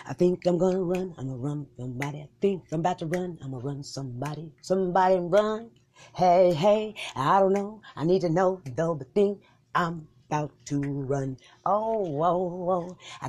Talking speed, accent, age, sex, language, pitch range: 175 wpm, American, 30-49, female, English, 150-215 Hz